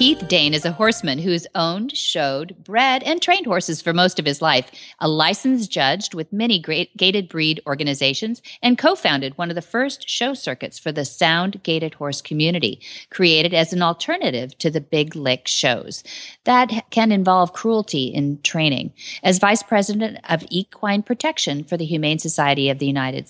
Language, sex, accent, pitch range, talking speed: English, female, American, 160-225 Hz, 175 wpm